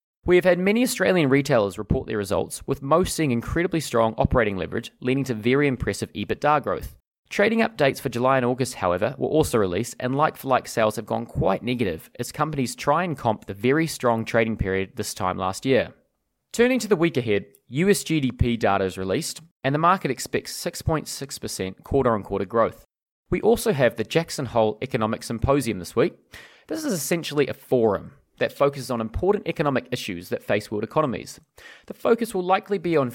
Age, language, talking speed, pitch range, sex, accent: 20-39, English, 185 wpm, 110-150 Hz, male, Australian